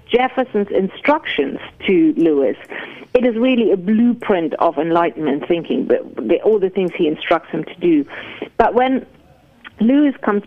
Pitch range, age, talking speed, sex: 185-260 Hz, 40-59, 150 wpm, female